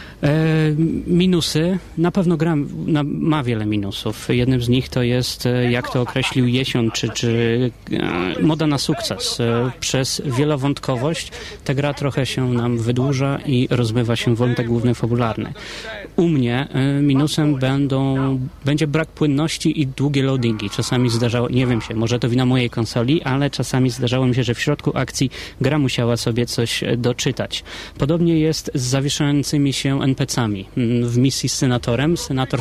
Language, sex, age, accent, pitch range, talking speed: Polish, male, 30-49, native, 120-145 Hz, 145 wpm